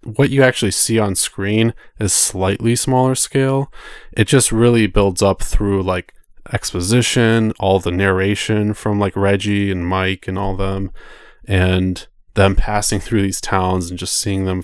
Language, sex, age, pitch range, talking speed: English, male, 20-39, 95-115 Hz, 160 wpm